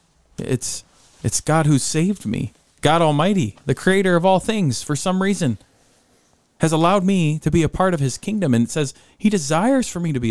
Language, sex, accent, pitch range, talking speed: English, male, American, 120-170 Hz, 205 wpm